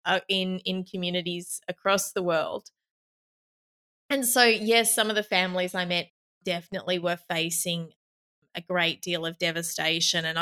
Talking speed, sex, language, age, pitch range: 145 wpm, female, English, 20-39, 160-180 Hz